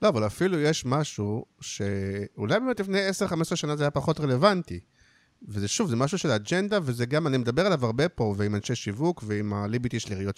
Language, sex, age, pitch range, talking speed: Hebrew, male, 50-69, 110-160 Hz, 190 wpm